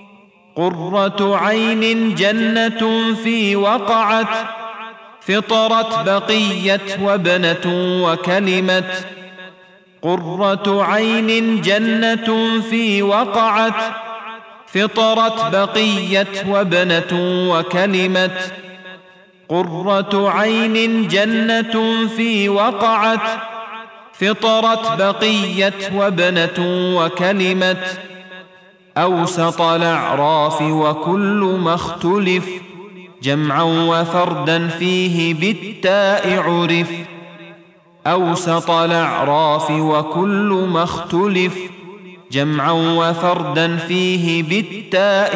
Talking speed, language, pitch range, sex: 60 wpm, Arabic, 170-205 Hz, male